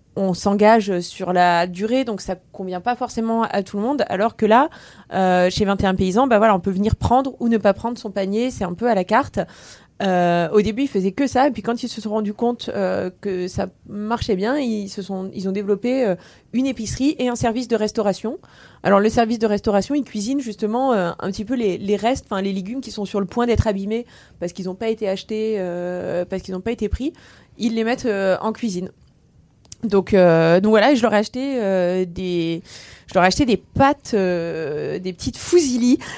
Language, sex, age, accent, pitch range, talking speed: French, female, 20-39, French, 190-235 Hz, 225 wpm